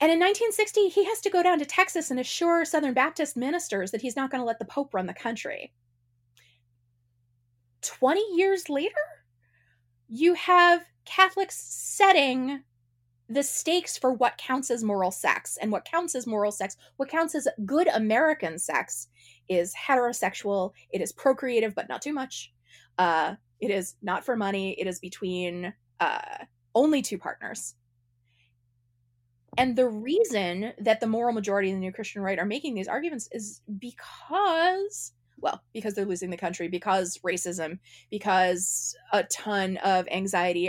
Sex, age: female, 20-39